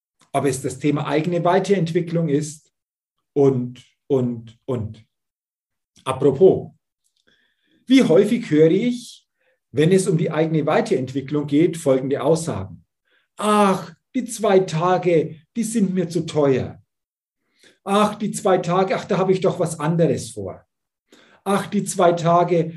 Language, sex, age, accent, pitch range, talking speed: German, male, 50-69, German, 140-185 Hz, 130 wpm